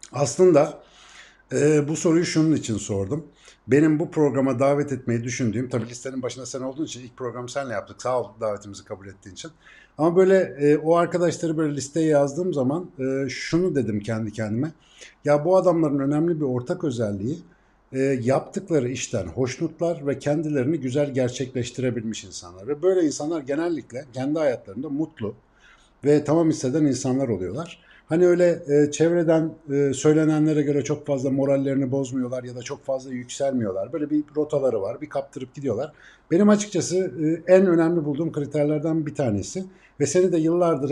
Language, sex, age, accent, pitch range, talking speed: Turkish, male, 60-79, native, 130-165 Hz, 155 wpm